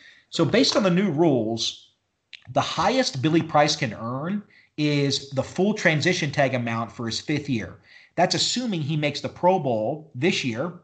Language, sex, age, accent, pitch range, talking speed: English, male, 40-59, American, 115-165 Hz, 170 wpm